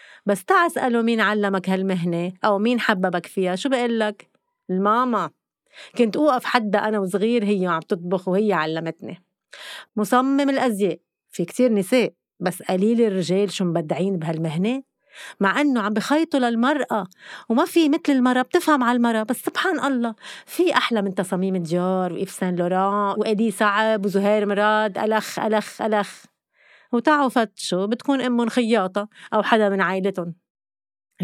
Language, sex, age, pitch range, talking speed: Arabic, female, 30-49, 190-255 Hz, 140 wpm